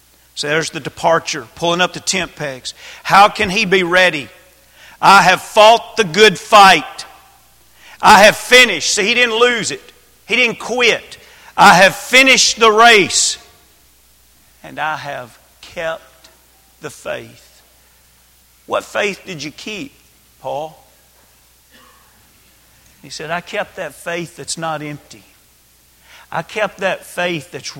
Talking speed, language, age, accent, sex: 135 wpm, English, 50-69, American, male